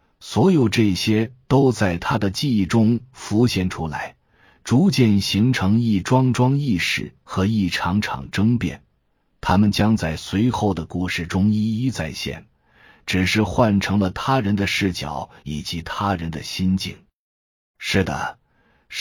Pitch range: 95-125 Hz